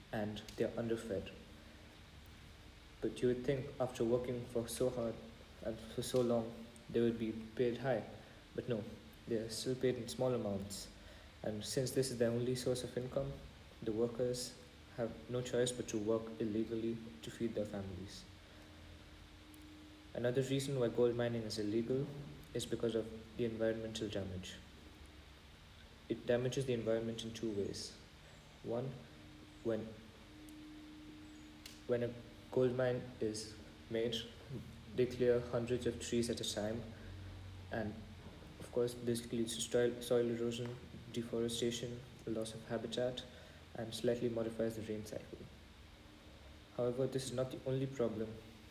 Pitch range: 100-120 Hz